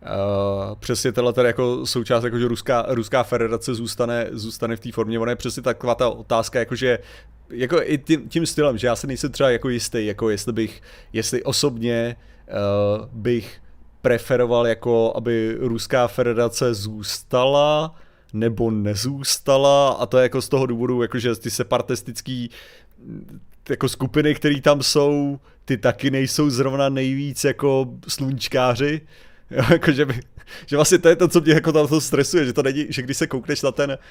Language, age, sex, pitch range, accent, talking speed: Czech, 30-49, male, 120-150 Hz, native, 160 wpm